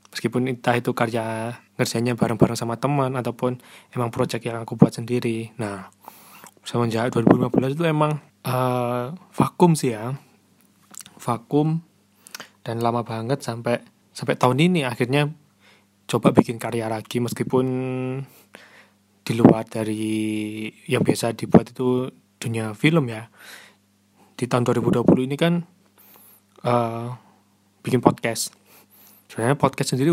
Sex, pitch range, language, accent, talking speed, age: male, 110-135 Hz, Indonesian, native, 120 wpm, 20-39